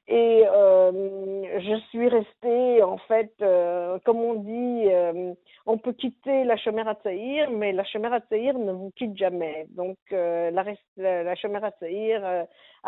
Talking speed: 170 wpm